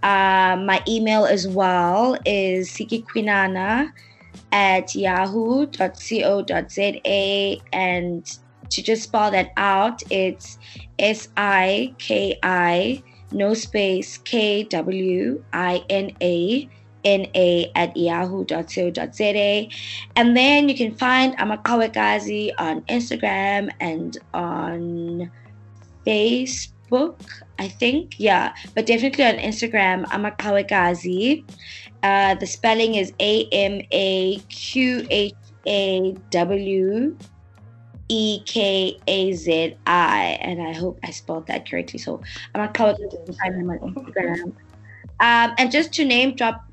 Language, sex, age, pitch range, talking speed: English, female, 20-39, 175-215 Hz, 85 wpm